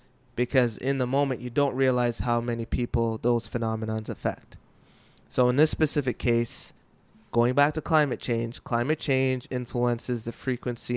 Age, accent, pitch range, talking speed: 20-39, American, 120-140 Hz, 155 wpm